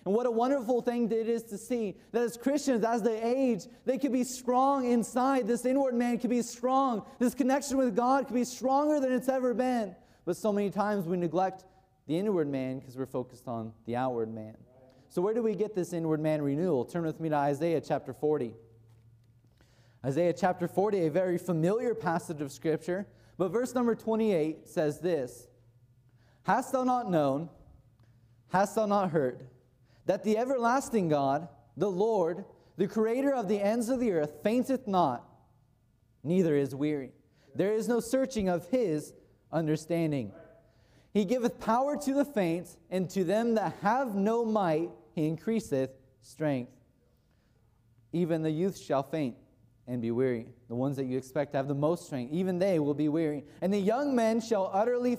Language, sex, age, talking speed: English, male, 20-39, 180 wpm